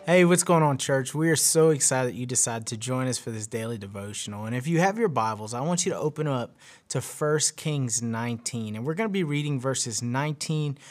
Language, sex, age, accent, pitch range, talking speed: English, male, 30-49, American, 130-170 Hz, 235 wpm